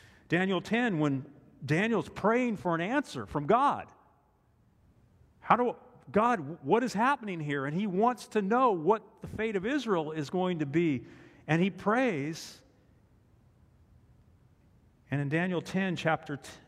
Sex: male